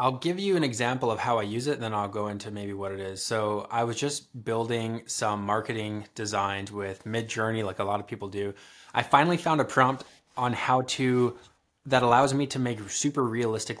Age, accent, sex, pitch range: 20-39, American, male, 105-130 Hz